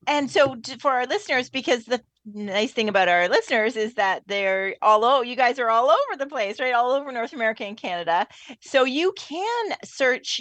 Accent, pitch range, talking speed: American, 190-250 Hz, 200 wpm